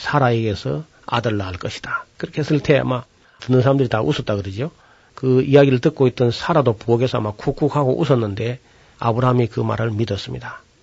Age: 40-59